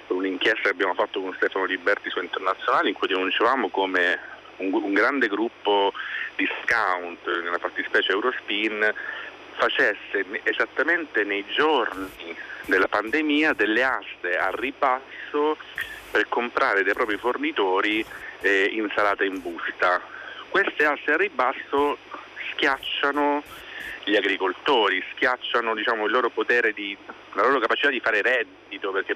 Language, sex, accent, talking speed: Italian, male, native, 125 wpm